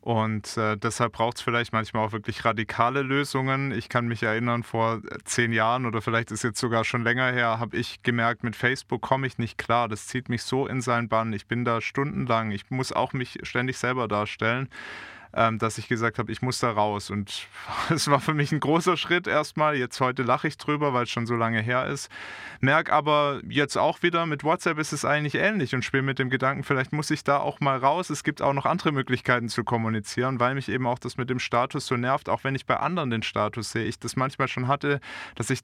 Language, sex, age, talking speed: German, male, 20-39, 230 wpm